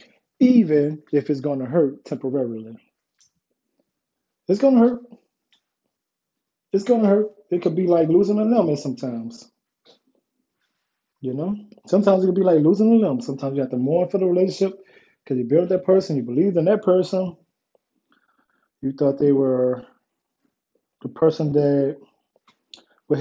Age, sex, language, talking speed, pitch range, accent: 20-39, male, English, 155 wpm, 140-195 Hz, American